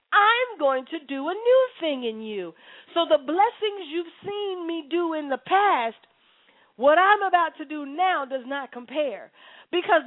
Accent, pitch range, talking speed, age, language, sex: American, 280-365 Hz, 175 wpm, 40-59, English, female